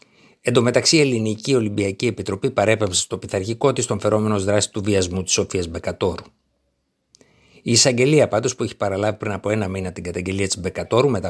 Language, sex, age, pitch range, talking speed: Greek, male, 50-69, 95-115 Hz, 175 wpm